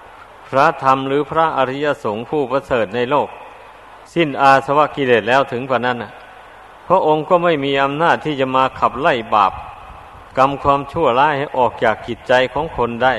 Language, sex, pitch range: Thai, male, 125-145 Hz